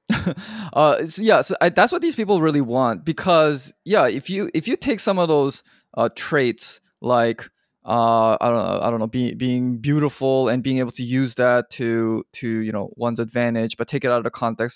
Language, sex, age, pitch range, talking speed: English, male, 20-39, 115-135 Hz, 215 wpm